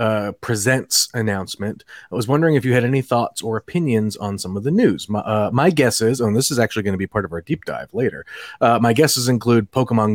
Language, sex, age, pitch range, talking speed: English, male, 30-49, 110-140 Hz, 240 wpm